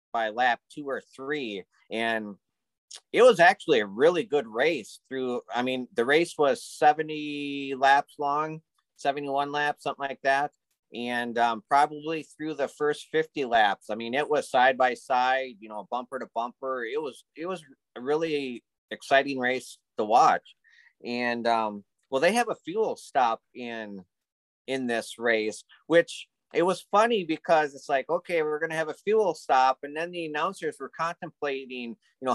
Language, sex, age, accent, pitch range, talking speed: English, male, 30-49, American, 130-175 Hz, 170 wpm